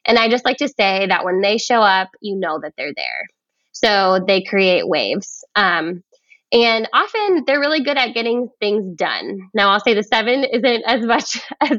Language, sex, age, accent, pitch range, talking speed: English, female, 20-39, American, 195-255 Hz, 200 wpm